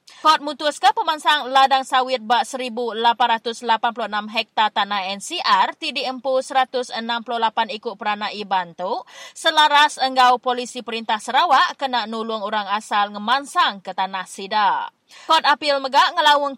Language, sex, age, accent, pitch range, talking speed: English, female, 20-39, Indonesian, 215-285 Hz, 125 wpm